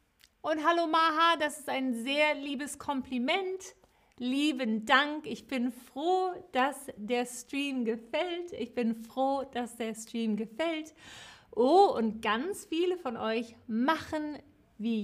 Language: German